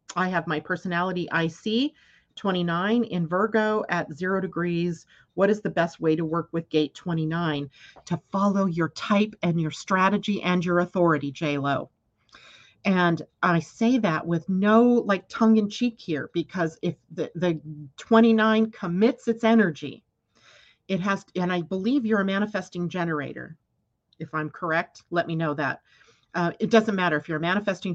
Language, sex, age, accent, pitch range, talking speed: English, female, 40-59, American, 160-200 Hz, 160 wpm